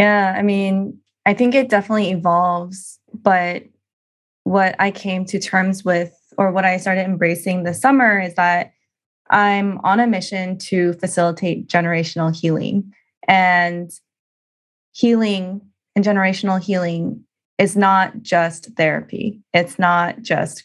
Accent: American